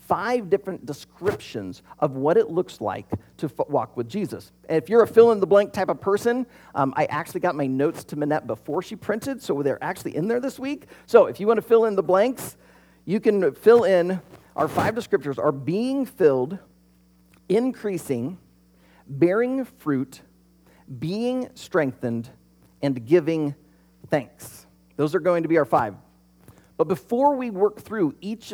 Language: English